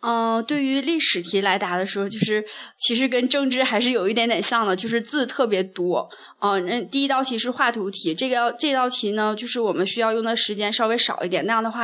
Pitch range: 190-235 Hz